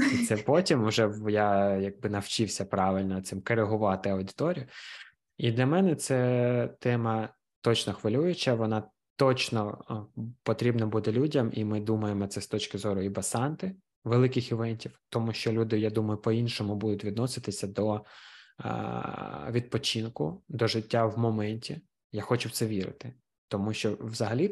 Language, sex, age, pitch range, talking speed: Ukrainian, male, 20-39, 100-120 Hz, 140 wpm